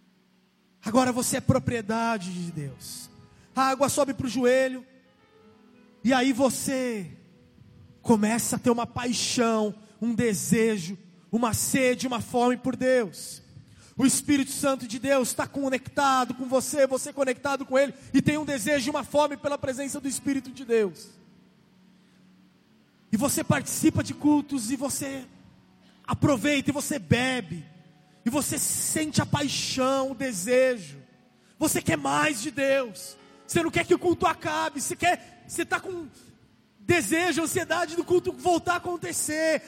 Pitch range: 235-325 Hz